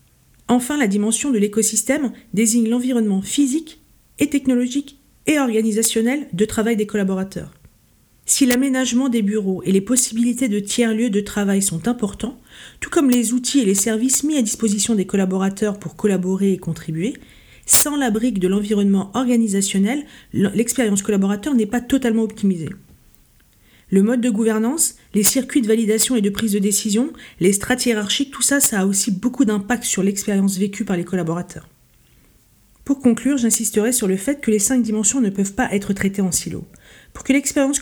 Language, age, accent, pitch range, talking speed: French, 50-69, French, 195-245 Hz, 170 wpm